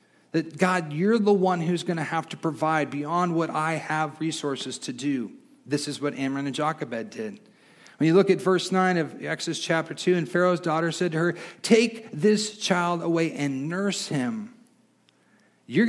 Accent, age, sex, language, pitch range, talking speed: American, 40-59, male, English, 150-200 Hz, 180 wpm